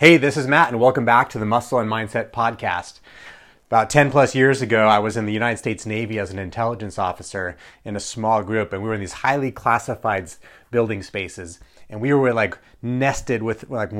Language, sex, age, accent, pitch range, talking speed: English, male, 30-49, American, 110-145 Hz, 210 wpm